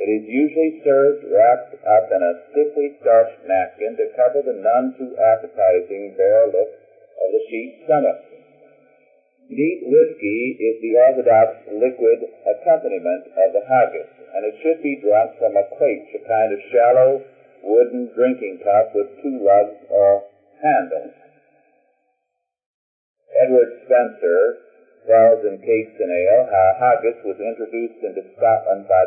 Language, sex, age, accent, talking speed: English, male, 50-69, American, 140 wpm